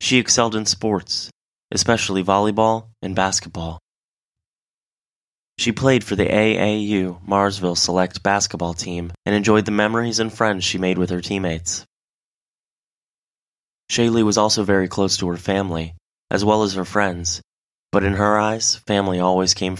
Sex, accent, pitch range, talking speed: male, American, 90-105 Hz, 145 wpm